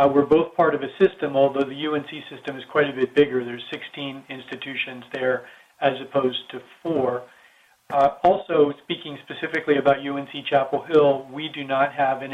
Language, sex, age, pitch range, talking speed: English, male, 40-59, 130-145 Hz, 180 wpm